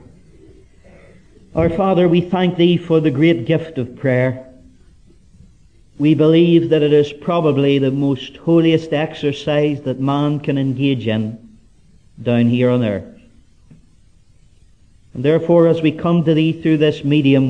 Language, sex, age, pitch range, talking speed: English, male, 50-69, 115-160 Hz, 135 wpm